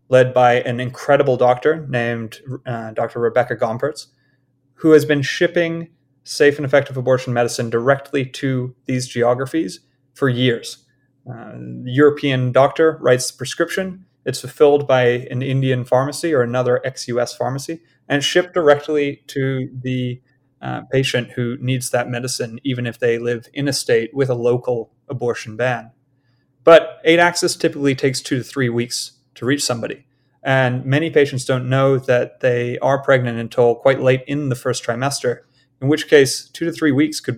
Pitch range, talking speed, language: 125-140 Hz, 160 wpm, English